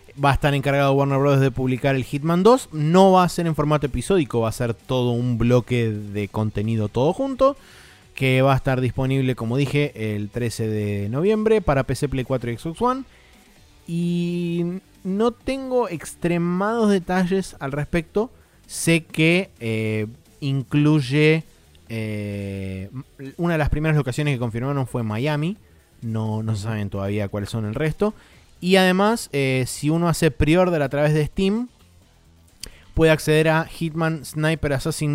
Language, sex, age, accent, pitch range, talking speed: Spanish, male, 20-39, Argentinian, 110-155 Hz, 155 wpm